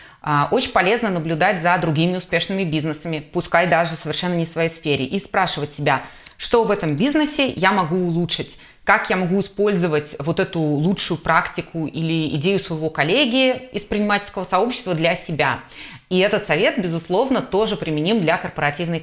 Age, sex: 20-39, female